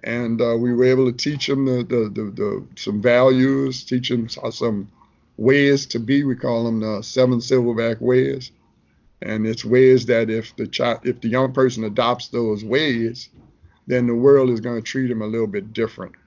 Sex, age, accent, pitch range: male, 50-69, American, 115-130 Hz